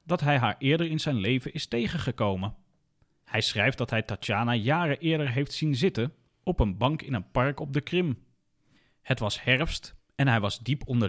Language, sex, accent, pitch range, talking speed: Dutch, male, Dutch, 110-145 Hz, 195 wpm